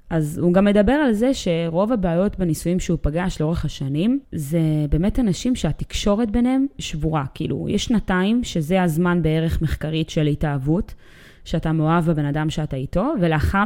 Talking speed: 155 wpm